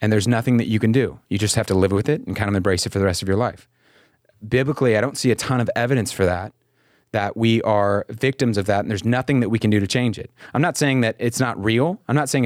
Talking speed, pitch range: 295 wpm, 105-130 Hz